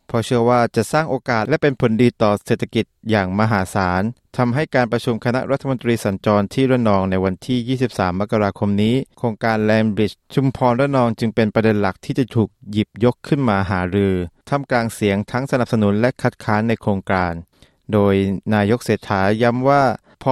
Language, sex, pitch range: Thai, male, 100-125 Hz